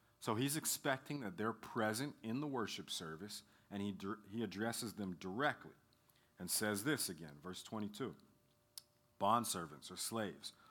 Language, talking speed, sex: English, 145 wpm, male